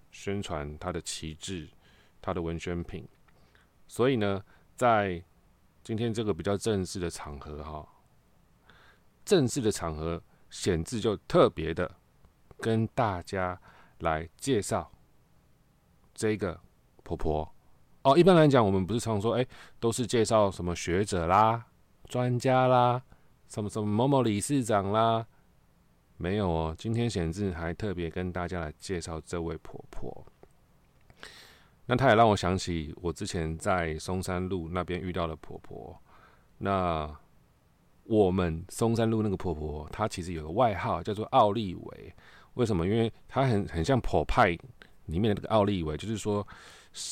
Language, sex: Chinese, male